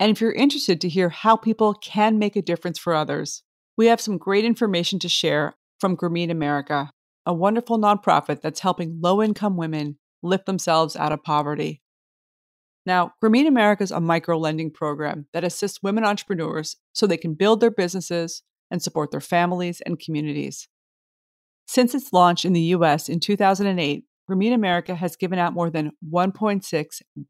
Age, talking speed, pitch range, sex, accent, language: 40-59, 165 wpm, 160-195 Hz, female, American, English